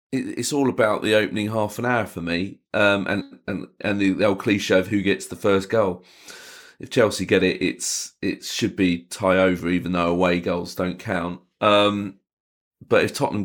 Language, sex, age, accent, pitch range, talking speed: English, male, 30-49, British, 90-100 Hz, 190 wpm